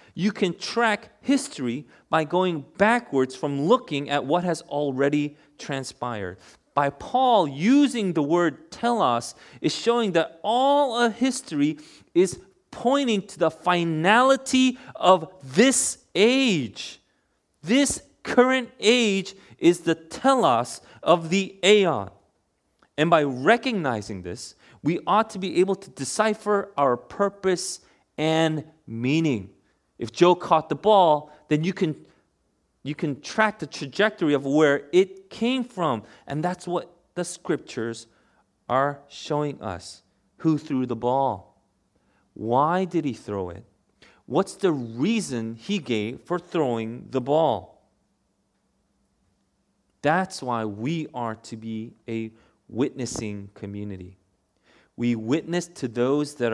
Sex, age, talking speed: male, 30-49, 120 wpm